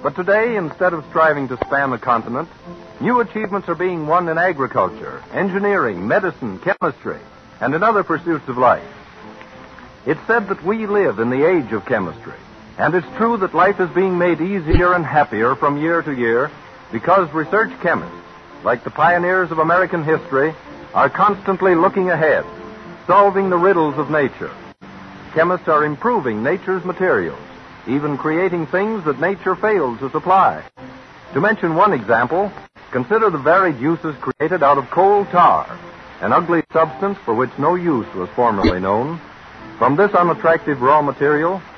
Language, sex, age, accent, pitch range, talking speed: English, male, 60-79, American, 150-195 Hz, 155 wpm